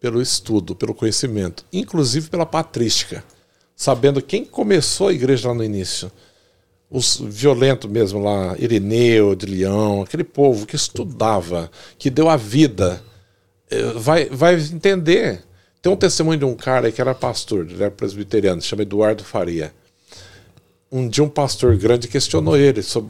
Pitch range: 95-135 Hz